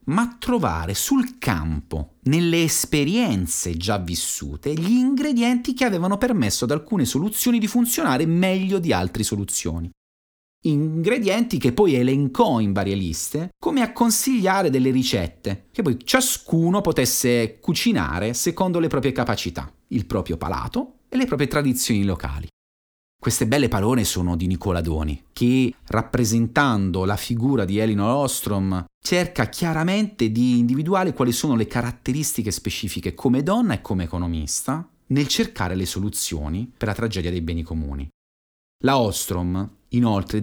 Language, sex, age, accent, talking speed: Italian, male, 30-49, native, 135 wpm